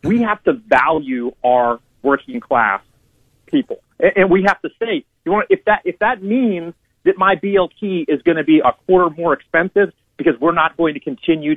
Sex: male